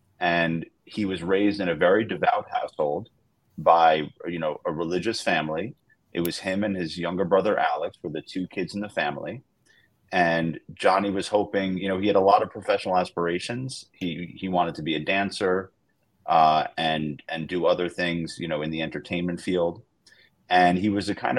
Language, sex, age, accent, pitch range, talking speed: English, male, 30-49, American, 85-100 Hz, 190 wpm